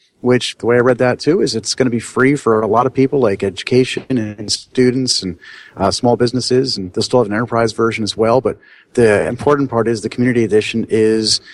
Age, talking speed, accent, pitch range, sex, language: 40-59, 230 wpm, American, 100-125 Hz, male, English